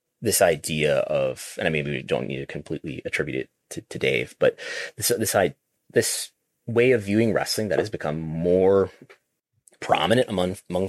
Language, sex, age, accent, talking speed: English, male, 30-49, American, 170 wpm